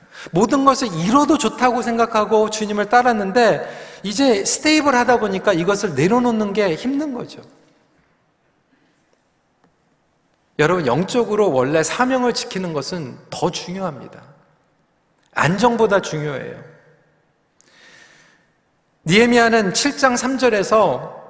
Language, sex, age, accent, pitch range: Korean, male, 40-59, native, 165-240 Hz